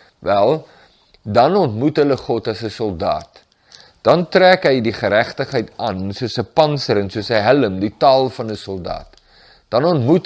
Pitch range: 110-150 Hz